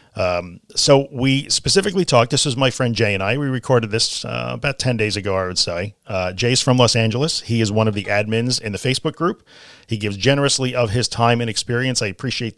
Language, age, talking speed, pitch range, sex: English, 40-59, 230 wpm, 110-135 Hz, male